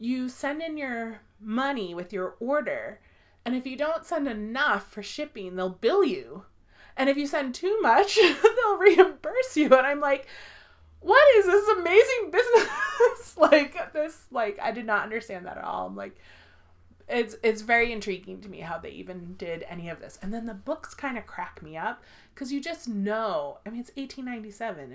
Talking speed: 190 wpm